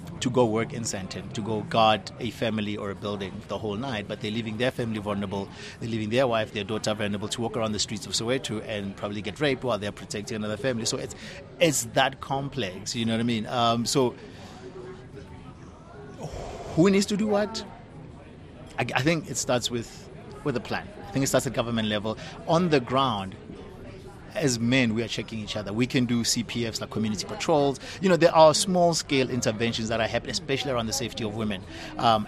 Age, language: 30-49, English